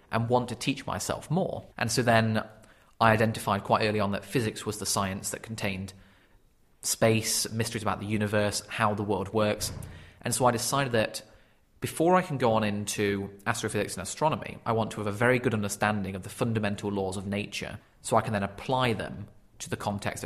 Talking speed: 200 wpm